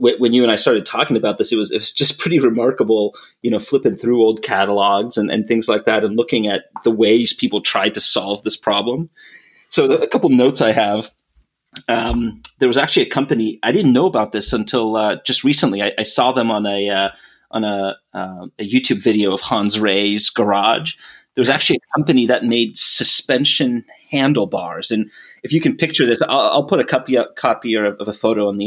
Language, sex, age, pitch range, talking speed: English, male, 30-49, 105-125 Hz, 215 wpm